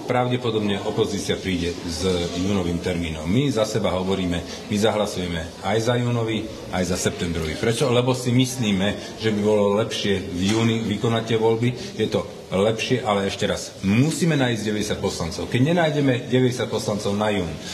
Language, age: Slovak, 40-59